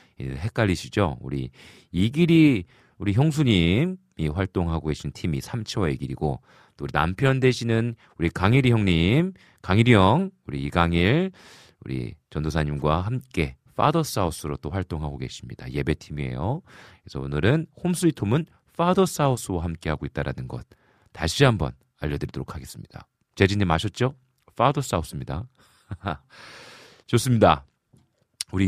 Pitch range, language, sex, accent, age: 75-125 Hz, Korean, male, native, 40-59